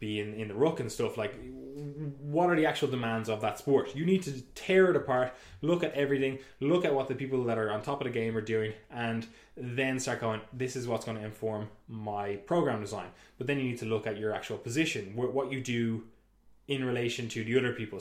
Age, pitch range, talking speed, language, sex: 20-39, 110-135 Hz, 235 wpm, English, male